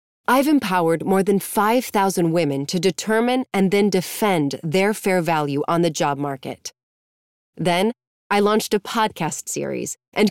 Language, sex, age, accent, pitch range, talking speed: English, female, 30-49, American, 160-225 Hz, 145 wpm